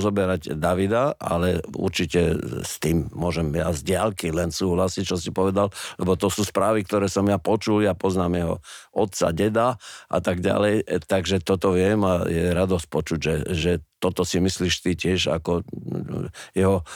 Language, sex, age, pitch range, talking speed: Slovak, male, 50-69, 90-110 Hz, 165 wpm